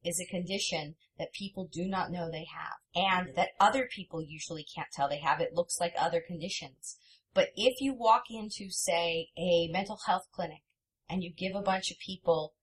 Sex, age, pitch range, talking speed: female, 30-49, 165-205 Hz, 195 wpm